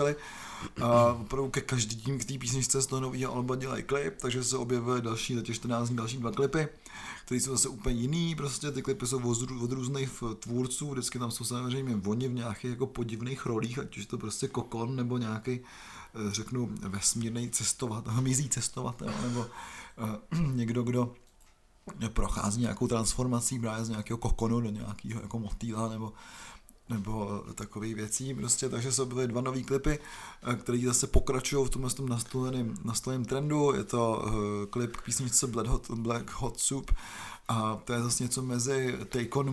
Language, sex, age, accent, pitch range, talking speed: Czech, male, 30-49, native, 115-130 Hz, 160 wpm